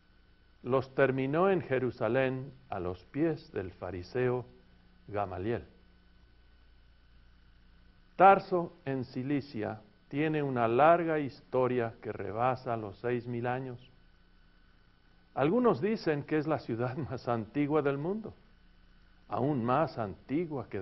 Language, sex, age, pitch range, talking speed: Spanish, male, 50-69, 90-145 Hz, 105 wpm